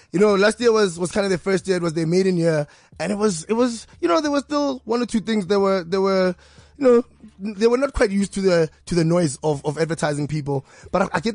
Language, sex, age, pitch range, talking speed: English, male, 20-39, 165-205 Hz, 280 wpm